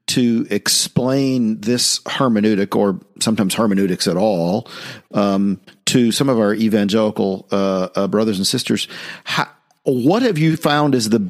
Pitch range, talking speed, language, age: 100-135 Hz, 145 wpm, English, 50-69